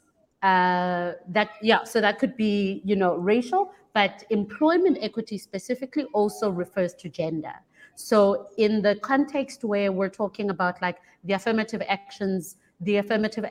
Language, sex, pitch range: English, female, 190-230 Hz